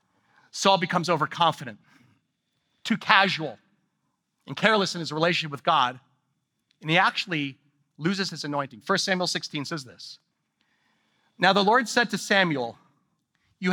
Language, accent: English, American